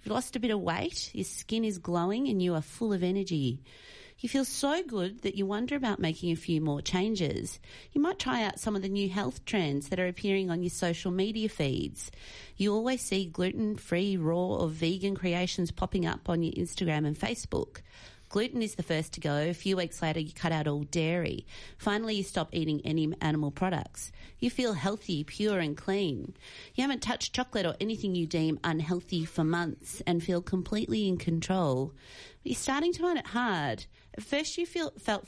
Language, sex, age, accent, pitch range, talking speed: English, female, 30-49, Australian, 160-210 Hz, 195 wpm